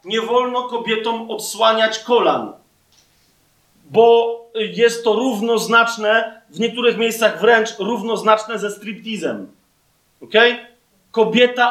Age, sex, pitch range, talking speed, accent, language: 40-59, male, 220-250 Hz, 90 wpm, native, Polish